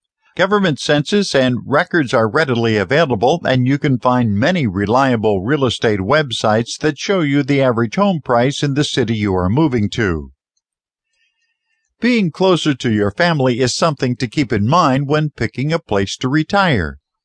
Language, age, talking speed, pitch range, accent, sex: English, 50-69, 165 wpm, 110-160 Hz, American, male